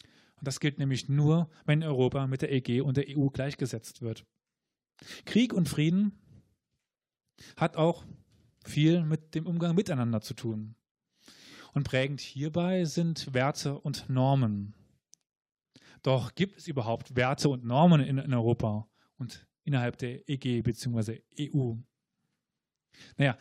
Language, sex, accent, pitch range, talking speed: German, male, German, 130-155 Hz, 125 wpm